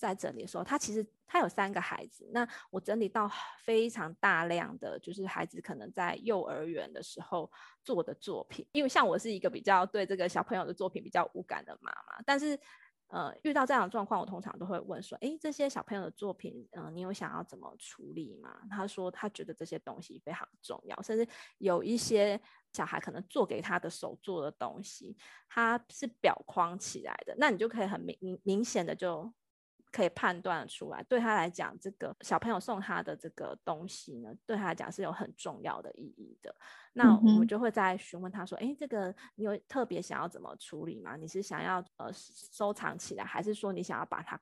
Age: 20-39